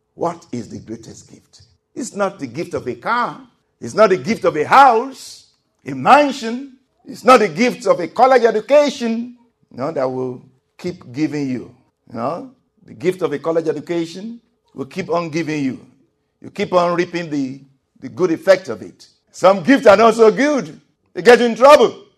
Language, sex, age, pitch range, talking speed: English, male, 50-69, 160-240 Hz, 190 wpm